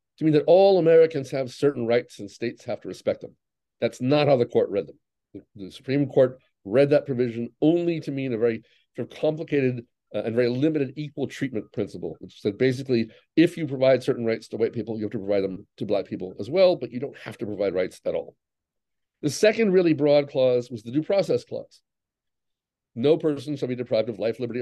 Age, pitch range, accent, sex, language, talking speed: 50-69, 120-155 Hz, American, male, English, 220 wpm